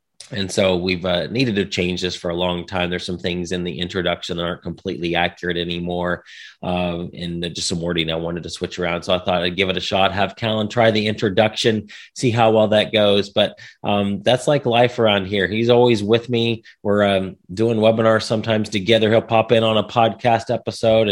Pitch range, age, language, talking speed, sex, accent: 90-110 Hz, 30-49, English, 215 wpm, male, American